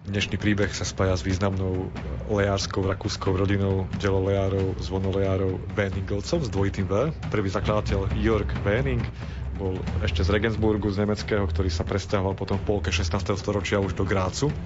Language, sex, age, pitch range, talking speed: Slovak, male, 30-49, 95-110 Hz, 145 wpm